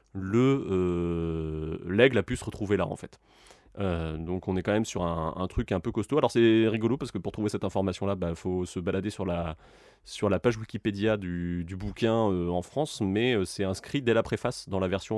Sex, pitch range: male, 90-120 Hz